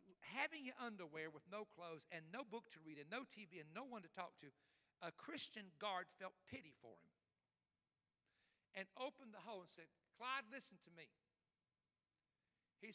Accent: American